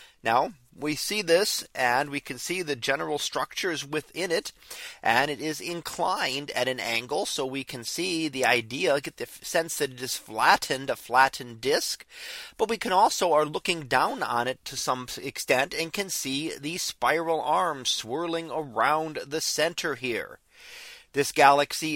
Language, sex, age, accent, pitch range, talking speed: English, male, 30-49, American, 130-185 Hz, 165 wpm